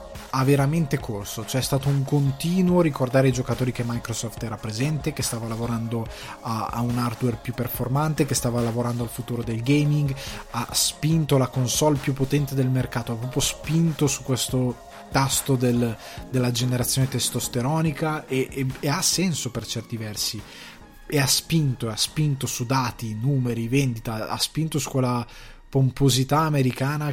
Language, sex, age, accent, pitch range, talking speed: Italian, male, 20-39, native, 120-140 Hz, 155 wpm